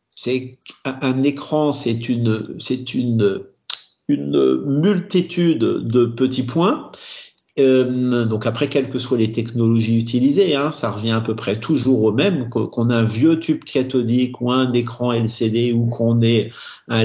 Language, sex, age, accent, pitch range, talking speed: French, male, 50-69, French, 115-145 Hz, 155 wpm